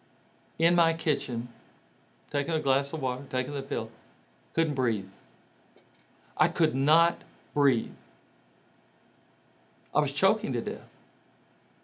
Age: 50-69